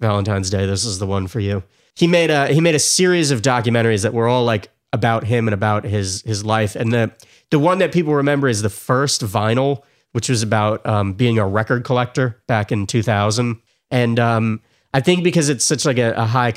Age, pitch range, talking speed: 30-49, 105-125 Hz, 225 wpm